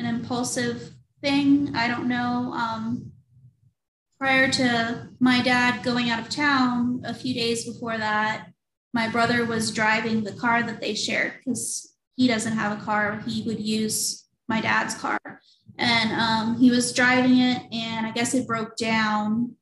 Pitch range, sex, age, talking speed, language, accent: 220-250 Hz, female, 20-39, 160 wpm, English, American